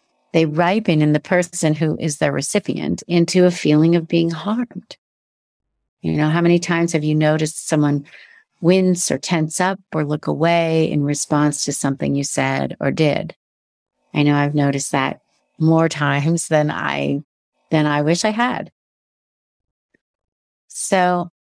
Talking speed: 150 wpm